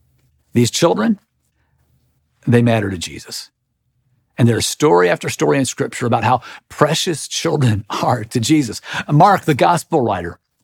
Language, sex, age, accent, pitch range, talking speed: English, male, 50-69, American, 120-165 Hz, 135 wpm